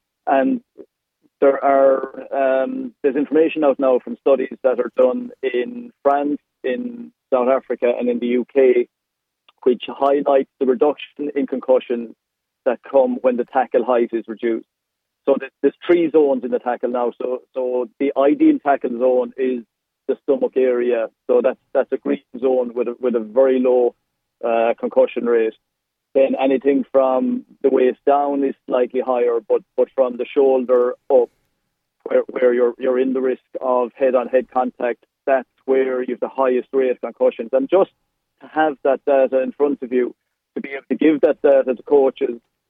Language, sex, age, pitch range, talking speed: English, male, 40-59, 125-145 Hz, 175 wpm